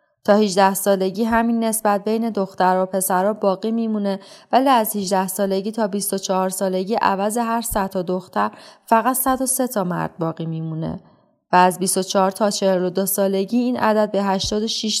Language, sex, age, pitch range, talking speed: Persian, female, 30-49, 190-220 Hz, 155 wpm